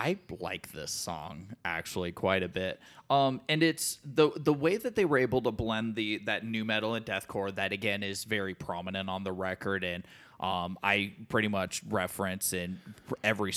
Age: 20-39